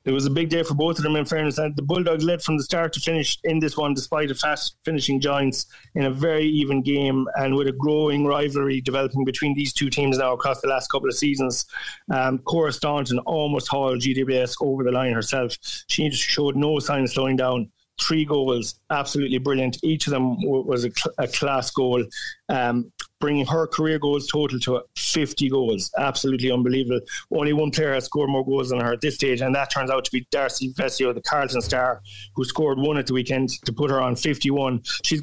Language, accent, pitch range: English, Irish, 130-145 Hz